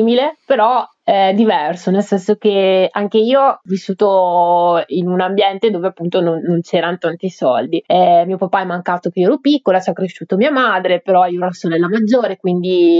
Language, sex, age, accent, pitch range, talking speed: Italian, female, 20-39, native, 180-225 Hz, 180 wpm